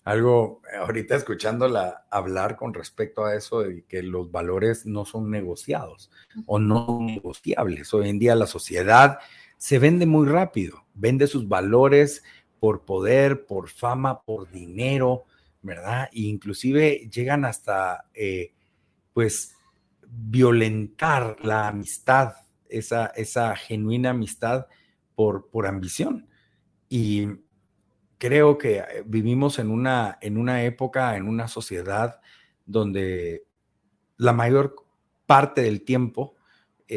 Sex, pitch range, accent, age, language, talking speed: male, 105-130 Hz, Mexican, 50-69, Spanish, 115 wpm